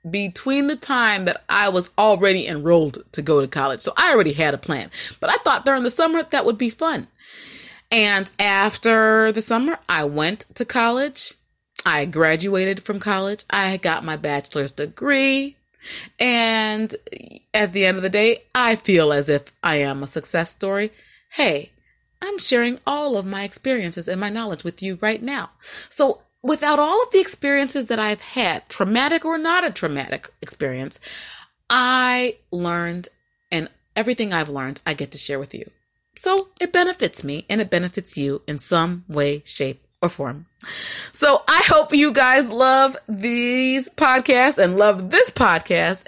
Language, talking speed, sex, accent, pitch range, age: English, 165 wpm, female, American, 170-255 Hz, 30-49